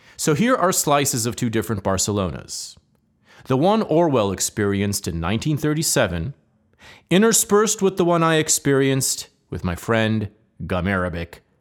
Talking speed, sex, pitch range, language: 125 wpm, male, 95-140 Hz, English